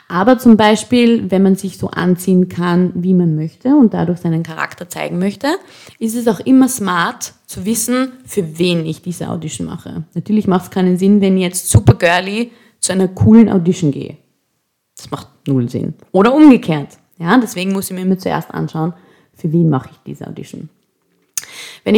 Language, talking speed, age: English, 185 wpm, 20-39